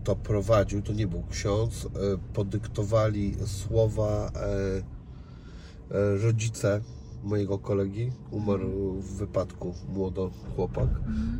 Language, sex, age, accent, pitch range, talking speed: Polish, male, 40-59, native, 100-115 Hz, 85 wpm